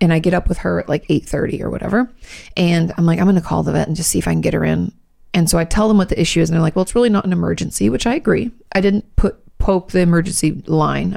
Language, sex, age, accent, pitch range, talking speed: English, female, 30-49, American, 155-195 Hz, 300 wpm